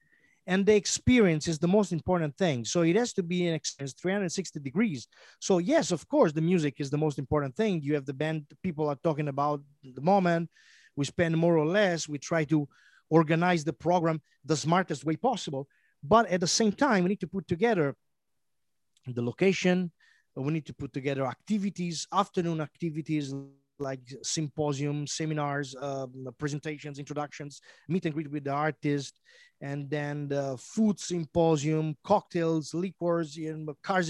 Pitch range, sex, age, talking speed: 145-180 Hz, male, 30-49, 165 wpm